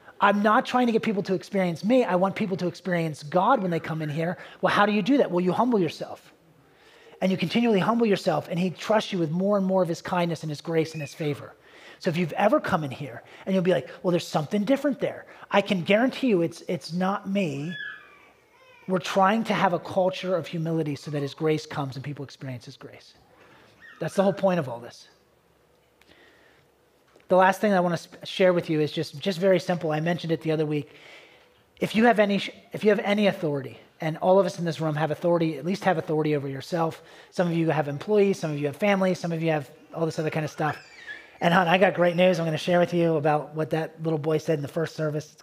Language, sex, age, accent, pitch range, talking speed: English, male, 30-49, American, 155-195 Hz, 250 wpm